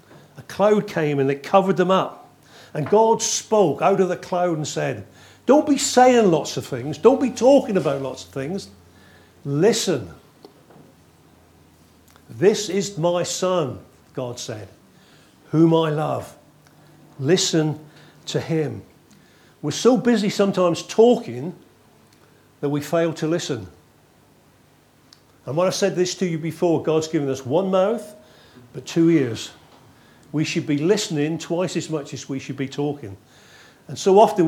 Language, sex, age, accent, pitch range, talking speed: English, male, 50-69, British, 135-185 Hz, 145 wpm